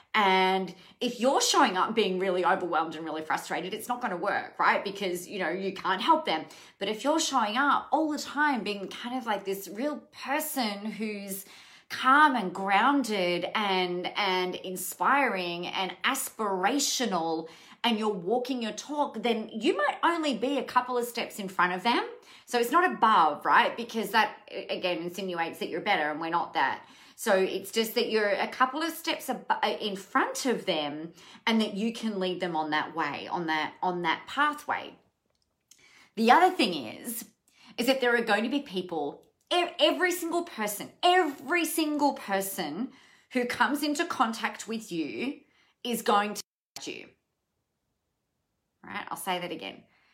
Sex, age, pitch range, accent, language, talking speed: female, 30-49, 190-275 Hz, Australian, English, 170 wpm